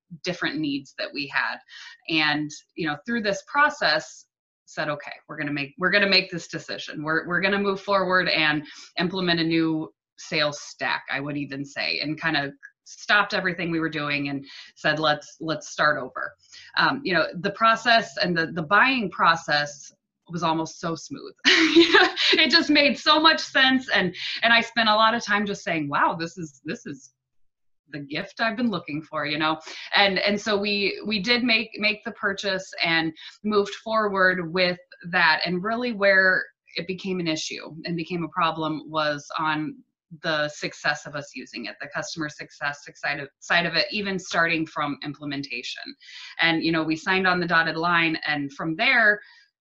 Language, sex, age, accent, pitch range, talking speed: English, female, 20-39, American, 150-205 Hz, 185 wpm